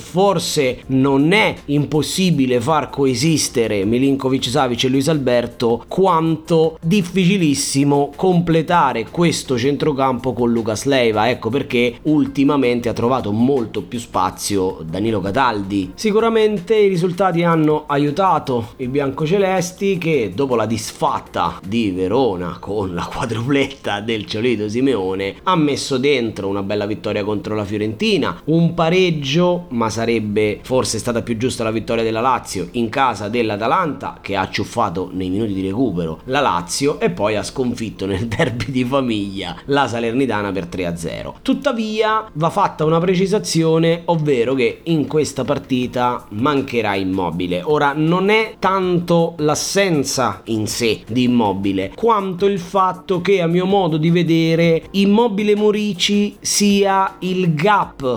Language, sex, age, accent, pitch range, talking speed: Italian, male, 30-49, native, 115-175 Hz, 135 wpm